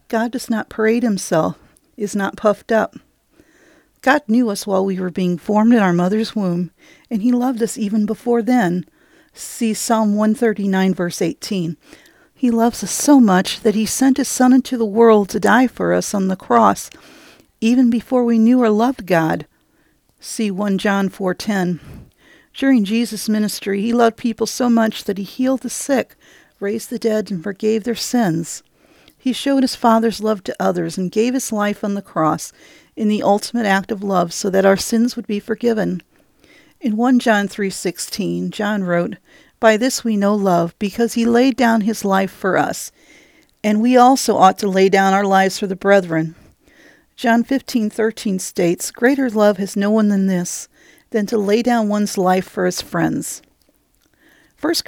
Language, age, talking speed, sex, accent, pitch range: English, 50-69, 180 wpm, female, American, 195-235 Hz